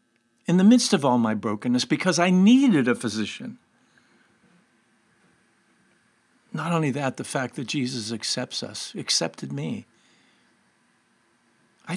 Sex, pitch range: male, 125-190 Hz